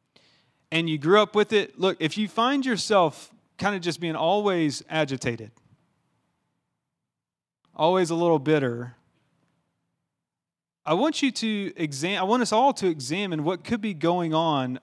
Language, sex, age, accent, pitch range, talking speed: English, male, 30-49, American, 145-180 Hz, 150 wpm